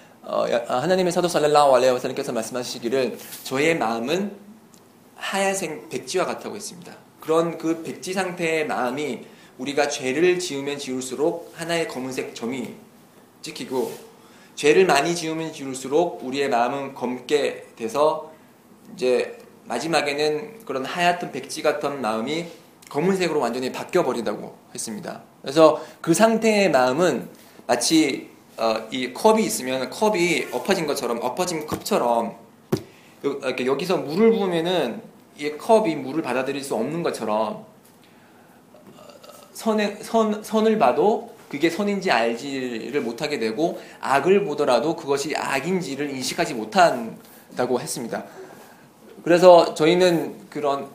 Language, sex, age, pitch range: Korean, male, 20-39, 130-185 Hz